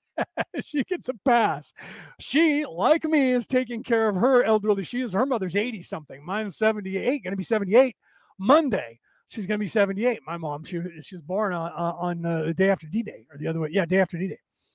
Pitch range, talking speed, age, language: 180-235 Hz, 210 wpm, 30-49, English